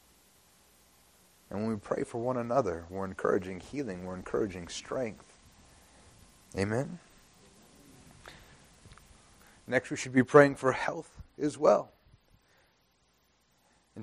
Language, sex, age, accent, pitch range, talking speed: English, male, 30-49, American, 105-140 Hz, 105 wpm